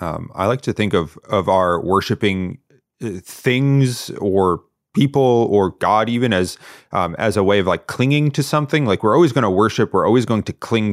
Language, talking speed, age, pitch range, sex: English, 200 wpm, 30-49, 90-115 Hz, male